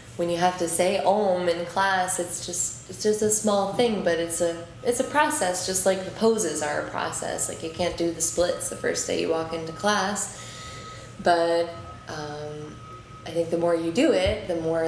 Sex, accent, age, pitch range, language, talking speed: female, American, 20-39, 160-195 Hz, English, 210 wpm